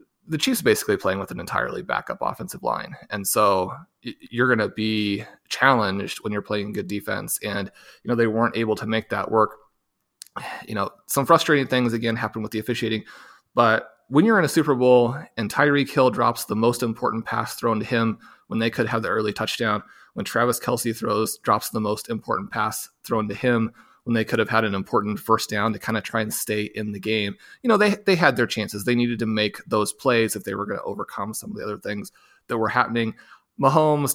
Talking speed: 220 wpm